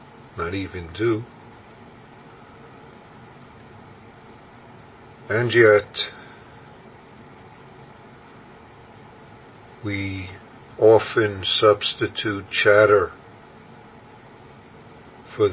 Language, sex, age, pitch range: English, male, 50-69, 105-120 Hz